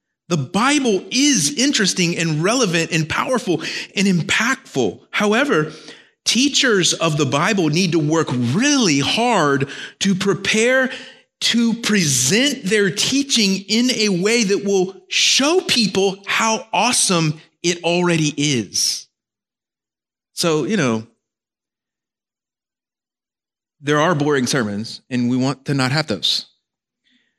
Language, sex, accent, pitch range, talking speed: English, male, American, 130-215 Hz, 115 wpm